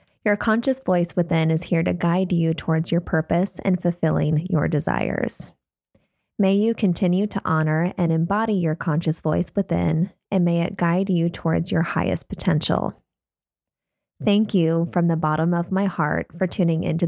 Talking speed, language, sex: 165 wpm, English, female